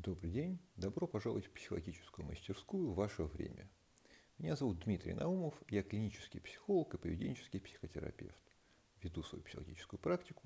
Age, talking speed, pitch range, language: 50-69, 140 wpm, 85-110 Hz, Russian